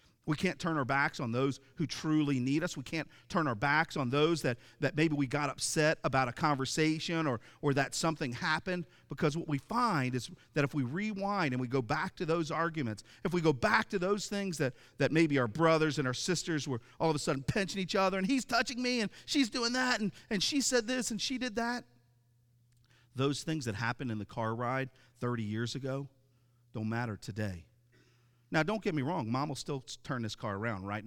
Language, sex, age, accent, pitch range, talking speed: English, male, 40-59, American, 120-160 Hz, 220 wpm